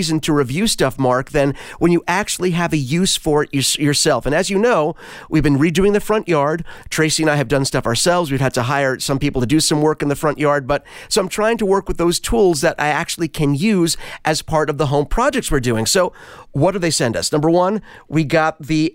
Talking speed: 250 wpm